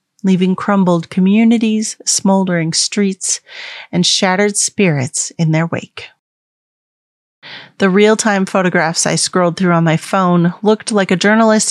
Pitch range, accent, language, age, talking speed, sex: 160-205 Hz, American, English, 30-49, 125 wpm, female